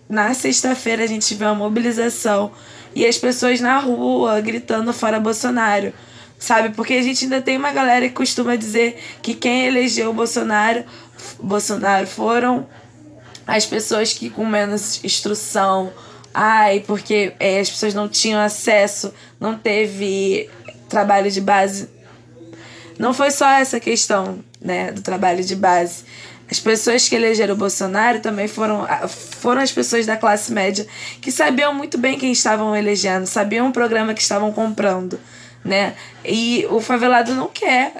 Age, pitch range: 10-29, 205-245 Hz